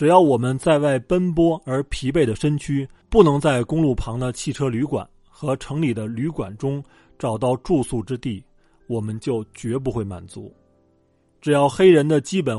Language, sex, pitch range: Chinese, male, 110-150 Hz